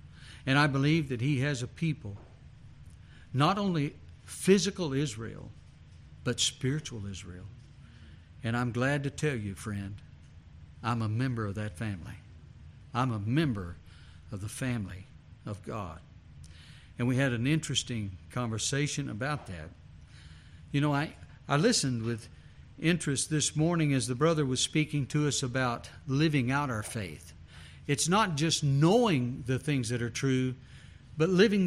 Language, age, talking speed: English, 60-79, 145 wpm